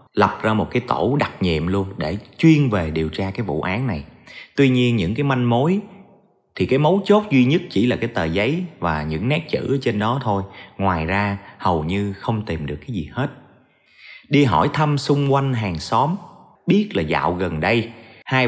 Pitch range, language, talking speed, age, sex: 100-145 Hz, Vietnamese, 210 wpm, 30-49, male